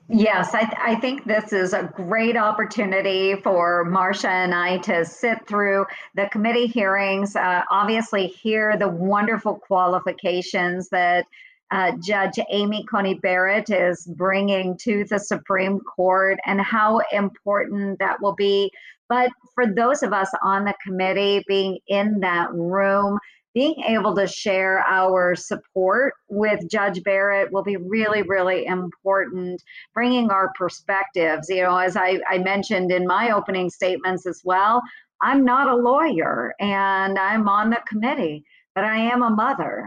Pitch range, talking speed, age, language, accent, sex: 185-215 Hz, 150 wpm, 50-69, English, American, male